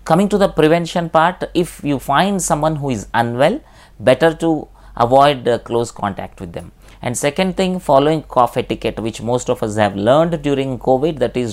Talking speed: 185 wpm